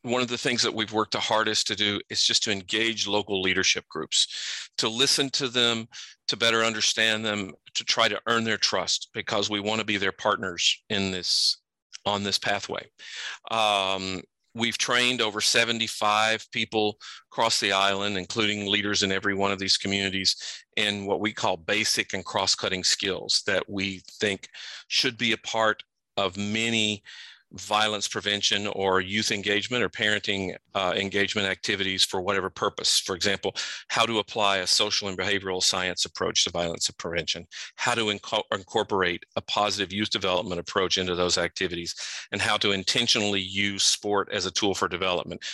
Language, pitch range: English, 95-110 Hz